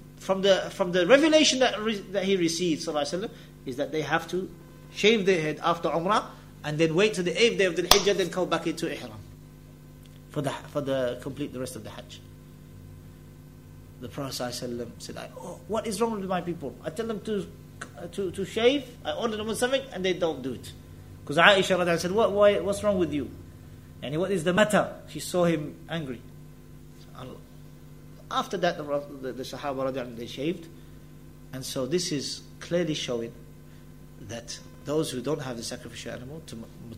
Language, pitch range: English, 135-205 Hz